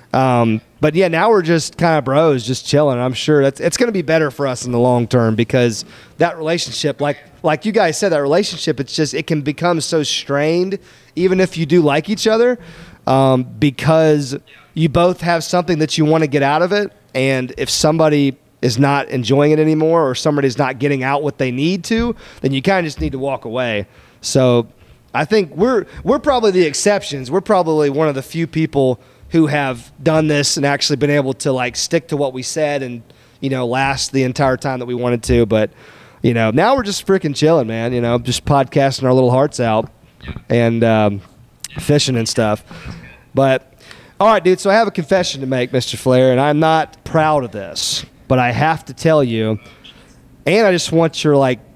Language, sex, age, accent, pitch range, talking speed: English, male, 30-49, American, 125-160 Hz, 215 wpm